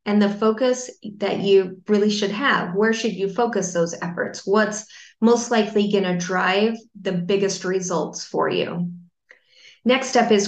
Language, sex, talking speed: English, female, 155 wpm